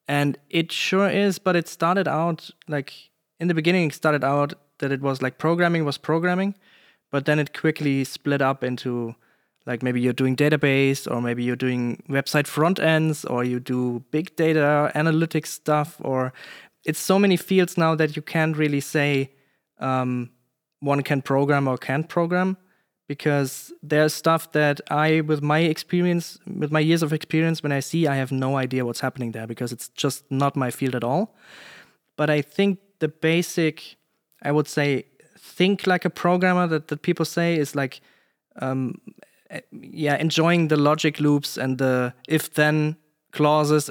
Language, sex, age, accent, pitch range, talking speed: English, male, 20-39, German, 135-160 Hz, 170 wpm